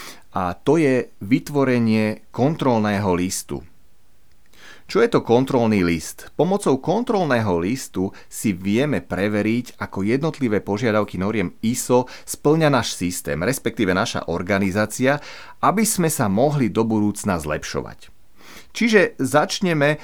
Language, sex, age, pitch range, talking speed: Slovak, male, 30-49, 100-135 Hz, 110 wpm